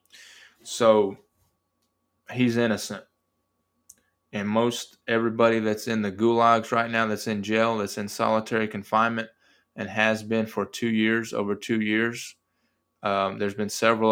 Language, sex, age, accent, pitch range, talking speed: English, male, 20-39, American, 100-110 Hz, 135 wpm